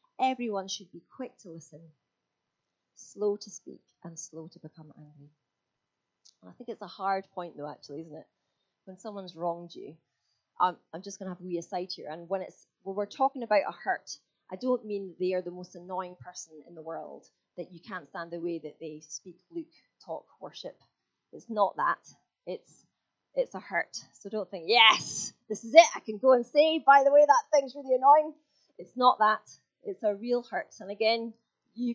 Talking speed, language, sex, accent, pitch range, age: 205 wpm, English, female, British, 170-230 Hz, 30-49